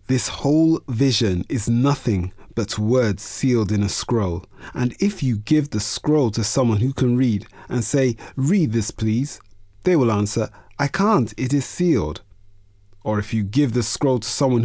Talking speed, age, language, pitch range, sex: 175 wpm, 30-49, English, 100-135 Hz, male